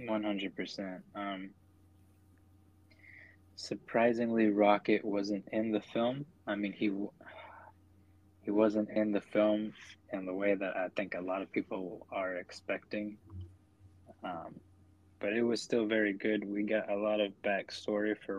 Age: 20-39